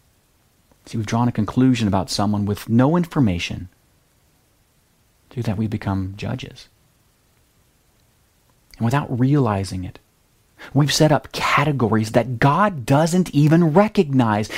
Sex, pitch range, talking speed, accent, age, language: male, 115-170 Hz, 120 wpm, American, 30-49, English